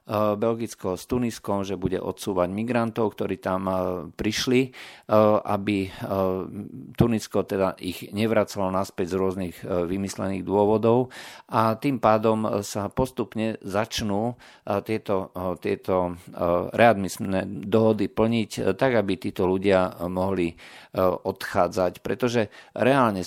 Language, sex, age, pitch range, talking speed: Slovak, male, 50-69, 95-110 Hz, 100 wpm